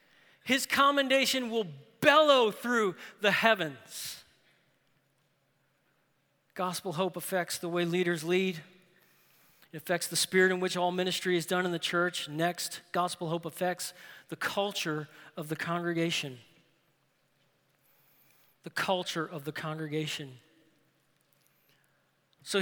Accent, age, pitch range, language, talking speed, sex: American, 40-59, 160-210 Hz, English, 110 wpm, male